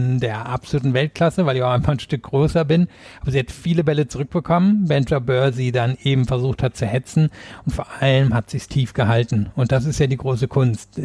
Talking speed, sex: 225 wpm, male